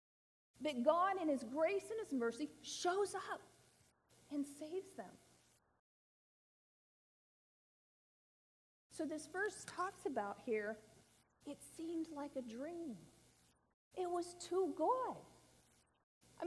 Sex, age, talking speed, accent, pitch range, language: female, 40-59, 105 wpm, American, 240-360 Hz, English